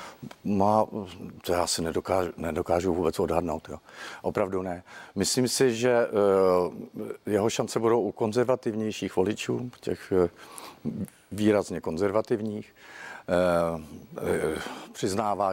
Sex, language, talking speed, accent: male, Czech, 75 wpm, native